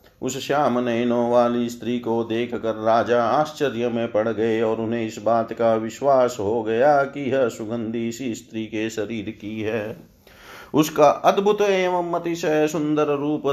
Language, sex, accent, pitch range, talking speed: Hindi, male, native, 115-140 Hz, 155 wpm